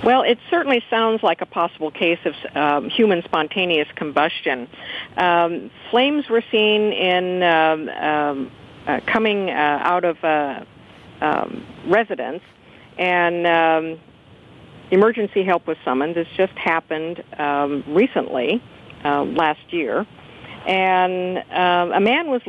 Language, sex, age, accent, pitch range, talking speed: English, female, 50-69, American, 160-195 Hz, 125 wpm